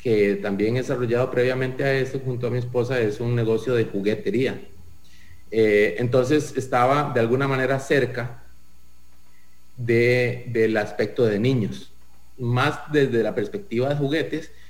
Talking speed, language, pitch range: 135 wpm, English, 110-140 Hz